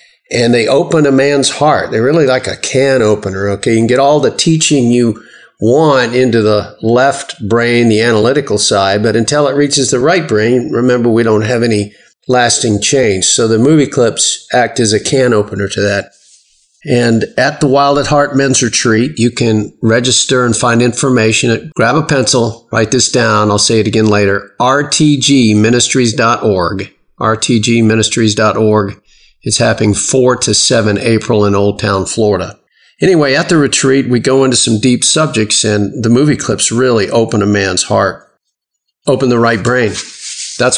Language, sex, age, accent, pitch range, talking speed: English, male, 50-69, American, 110-135 Hz, 170 wpm